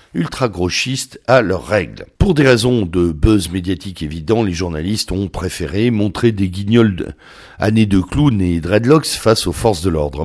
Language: French